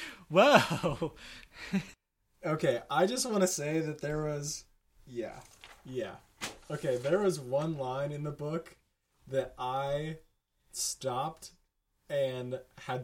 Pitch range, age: 110-145 Hz, 20-39